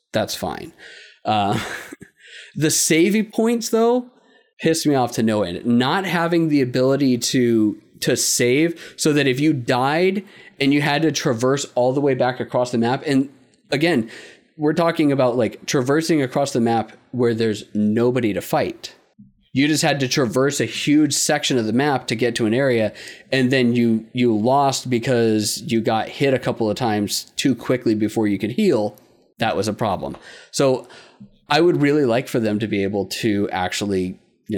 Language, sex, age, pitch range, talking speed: English, male, 30-49, 115-150 Hz, 180 wpm